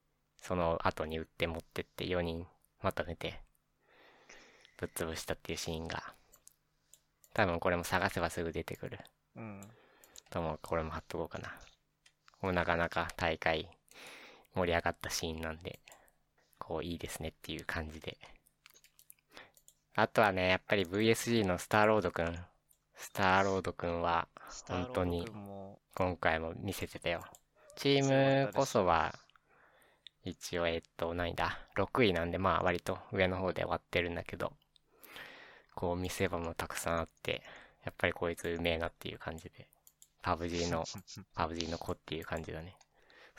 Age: 20-39